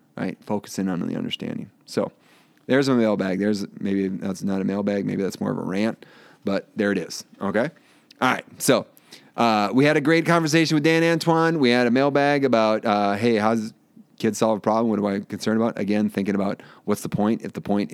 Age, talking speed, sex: 30-49, 215 wpm, male